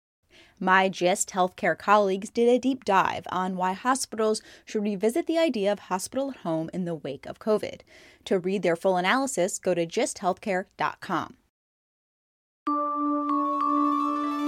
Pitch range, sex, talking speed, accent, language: 185-250 Hz, female, 125 wpm, American, English